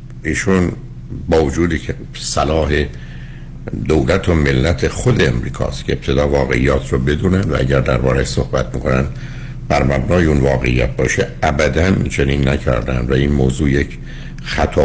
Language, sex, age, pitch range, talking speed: Persian, male, 60-79, 65-80 Hz, 135 wpm